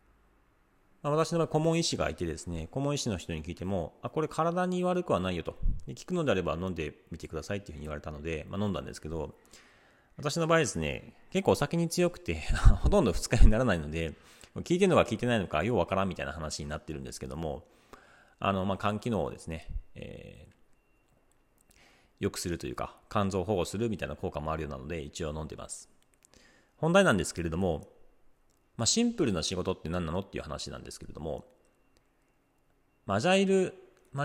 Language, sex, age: Japanese, male, 40-59